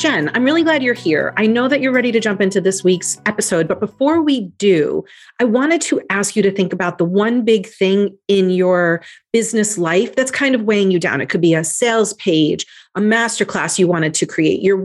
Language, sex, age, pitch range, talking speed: English, female, 40-59, 190-245 Hz, 225 wpm